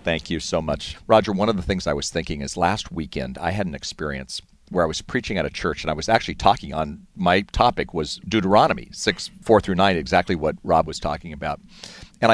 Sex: male